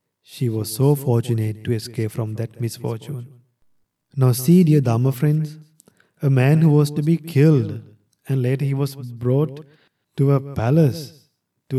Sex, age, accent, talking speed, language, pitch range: male, 30-49, Indian, 155 wpm, English, 120-145 Hz